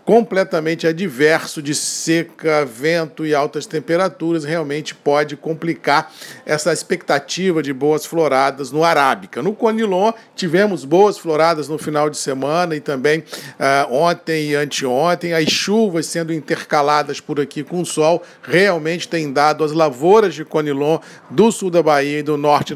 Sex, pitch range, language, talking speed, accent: male, 155-190 Hz, Portuguese, 150 wpm, Brazilian